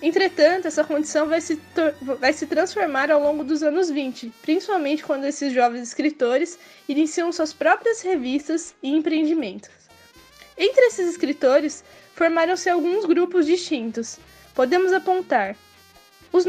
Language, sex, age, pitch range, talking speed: Portuguese, female, 10-29, 265-335 Hz, 120 wpm